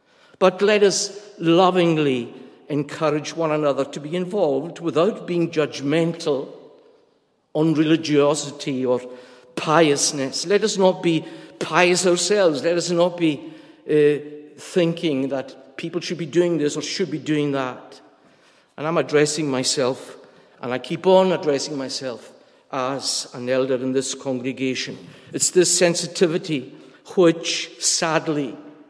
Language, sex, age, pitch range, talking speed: English, male, 60-79, 145-180 Hz, 125 wpm